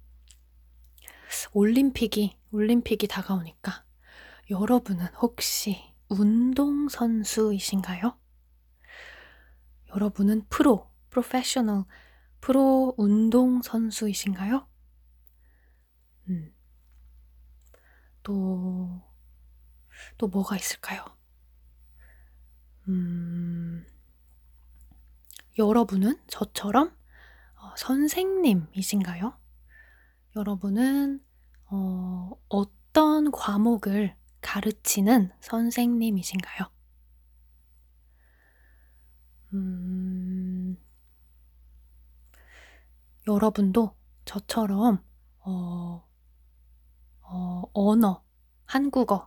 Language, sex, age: Korean, female, 20-39